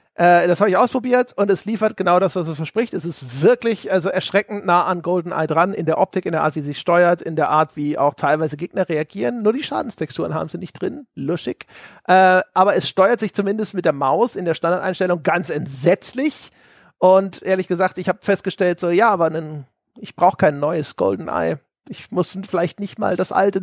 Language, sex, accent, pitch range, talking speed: German, male, German, 165-200 Hz, 205 wpm